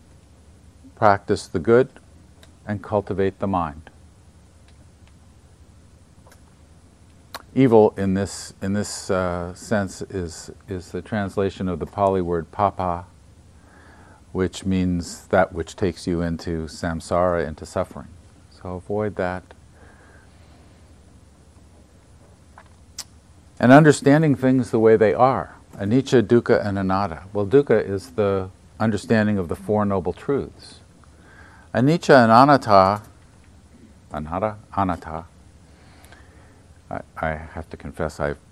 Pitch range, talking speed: 85-100 Hz, 105 wpm